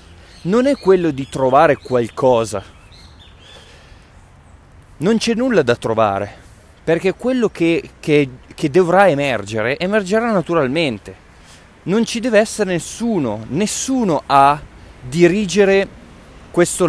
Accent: native